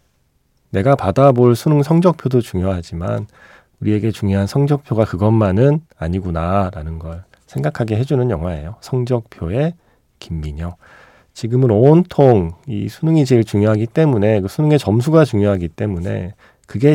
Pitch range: 90-135 Hz